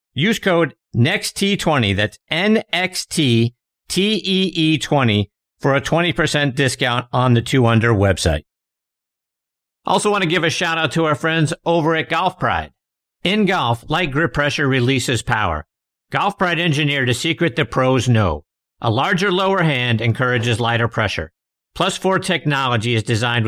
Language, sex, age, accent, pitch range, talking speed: English, male, 50-69, American, 120-170 Hz, 140 wpm